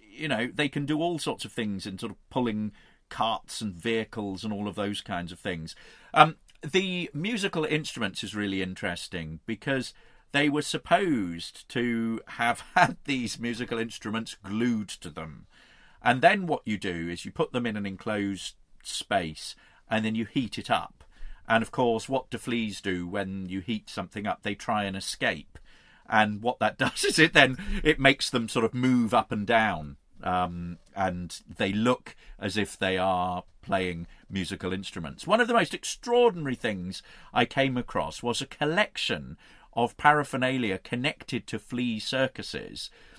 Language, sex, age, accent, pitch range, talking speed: English, male, 40-59, British, 100-140 Hz, 170 wpm